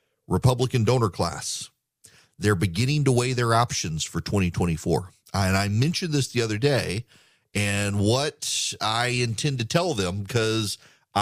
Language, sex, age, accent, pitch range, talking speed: English, male, 40-59, American, 95-120 Hz, 140 wpm